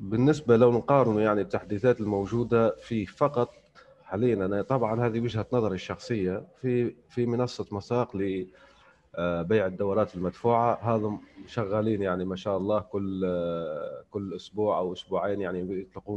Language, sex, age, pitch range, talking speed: Arabic, male, 30-49, 95-120 Hz, 135 wpm